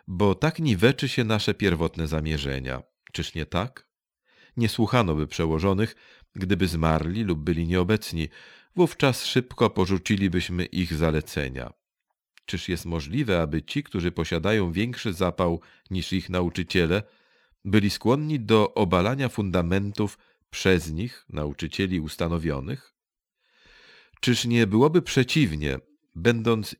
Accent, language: native, Polish